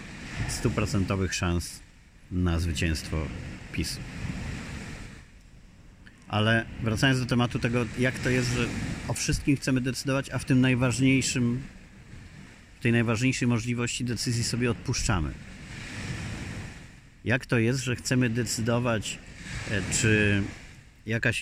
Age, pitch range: 40-59, 100-125 Hz